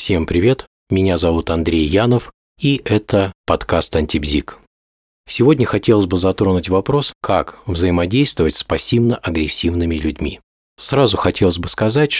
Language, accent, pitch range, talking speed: Russian, native, 85-120 Hz, 120 wpm